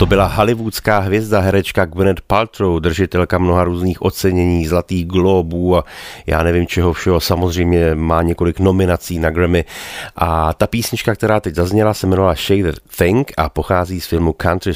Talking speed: 160 wpm